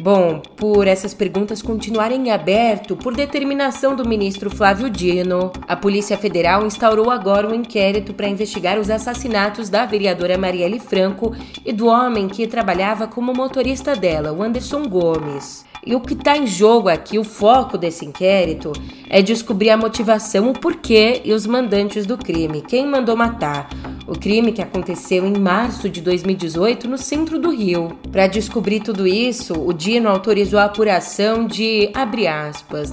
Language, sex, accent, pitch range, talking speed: Portuguese, female, Brazilian, 190-240 Hz, 160 wpm